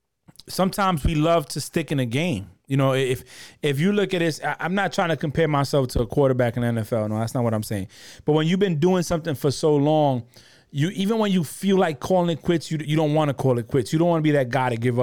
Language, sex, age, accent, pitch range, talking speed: English, male, 30-49, American, 130-165 Hz, 275 wpm